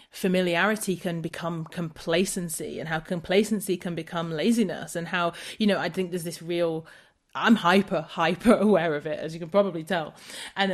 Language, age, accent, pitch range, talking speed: English, 30-49, British, 165-200 Hz, 175 wpm